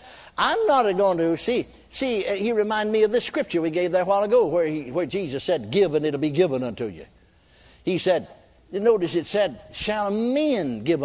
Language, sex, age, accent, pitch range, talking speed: English, male, 60-79, American, 165-255 Hz, 210 wpm